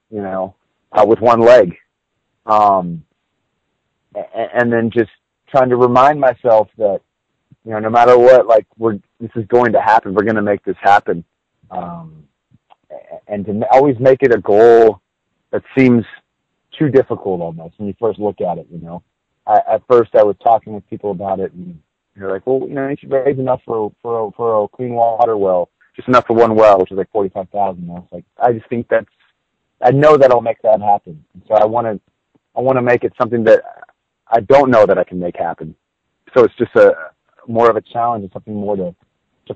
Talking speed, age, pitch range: 210 wpm, 30-49, 100-125 Hz